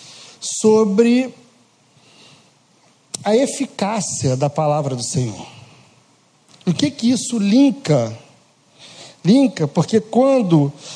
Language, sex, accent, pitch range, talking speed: Portuguese, male, Brazilian, 160-230 Hz, 80 wpm